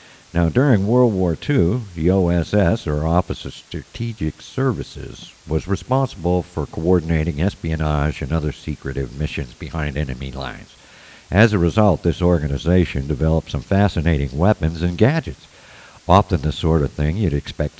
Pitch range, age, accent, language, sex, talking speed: 75-95 Hz, 60-79, American, English, male, 140 wpm